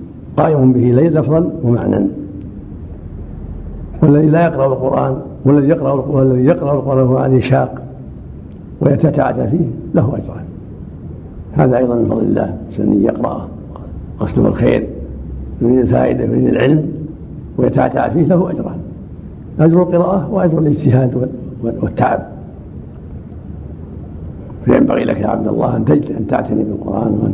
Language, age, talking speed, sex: Arabic, 70-89, 110 wpm, male